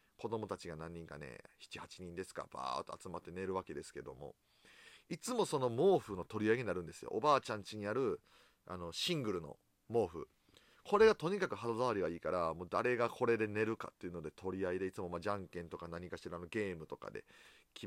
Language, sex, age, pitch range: Japanese, male, 30-49, 90-135 Hz